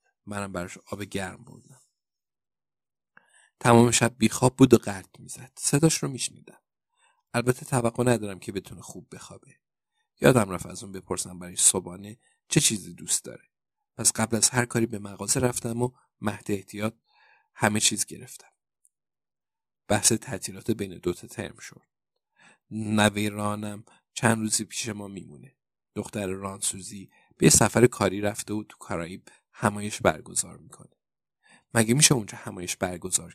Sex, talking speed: male, 140 wpm